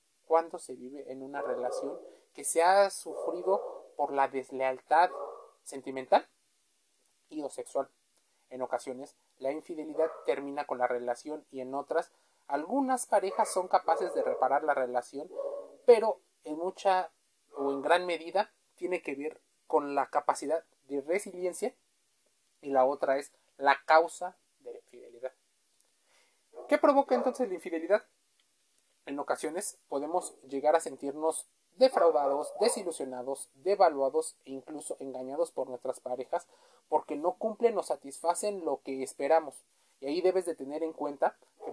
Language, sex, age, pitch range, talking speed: Spanish, male, 30-49, 140-200 Hz, 140 wpm